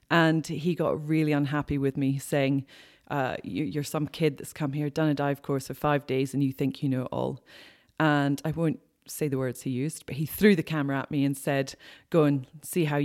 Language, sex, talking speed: English, female, 230 wpm